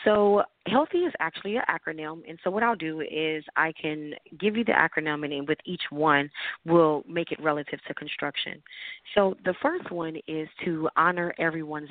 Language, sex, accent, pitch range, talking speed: English, female, American, 150-175 Hz, 180 wpm